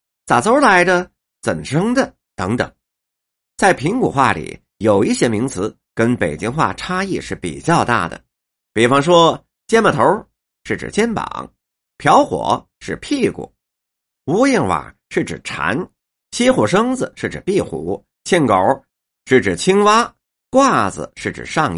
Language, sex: Chinese, male